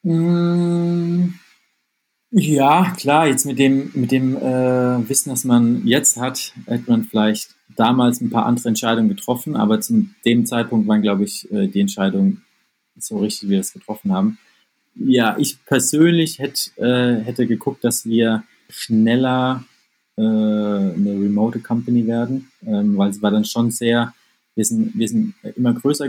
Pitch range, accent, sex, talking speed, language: 115-175 Hz, German, male, 150 wpm, German